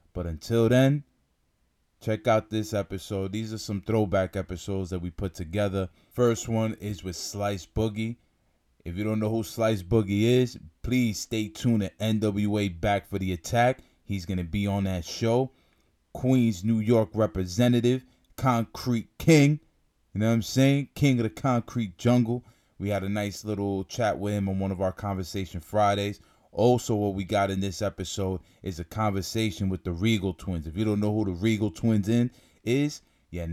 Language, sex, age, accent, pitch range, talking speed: English, male, 20-39, American, 95-115 Hz, 180 wpm